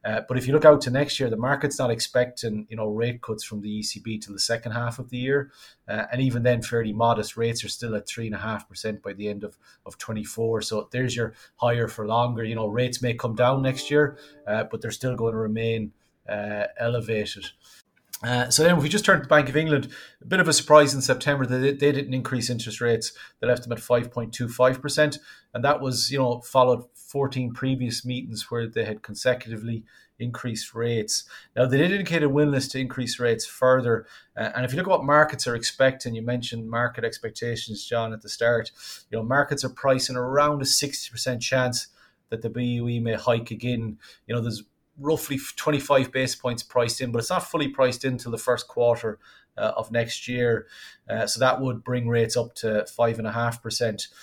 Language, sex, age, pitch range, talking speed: English, male, 30-49, 115-130 Hz, 215 wpm